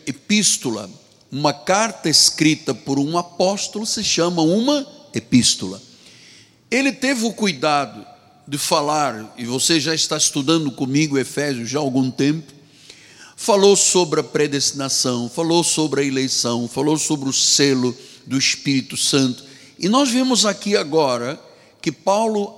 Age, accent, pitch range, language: 60-79, Brazilian, 140-175 Hz, Portuguese